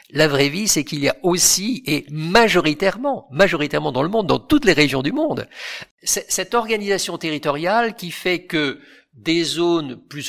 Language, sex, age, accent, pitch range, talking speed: French, male, 50-69, French, 135-200 Hz, 170 wpm